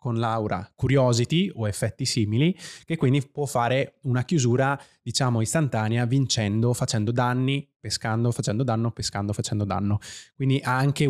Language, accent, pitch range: Italian, native, 110-145 Hz